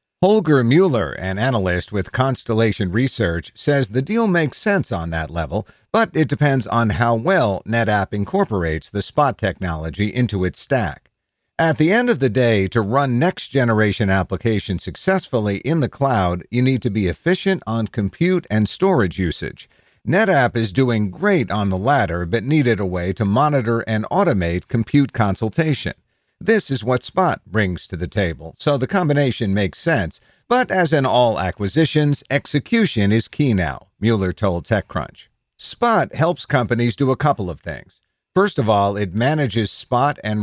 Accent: American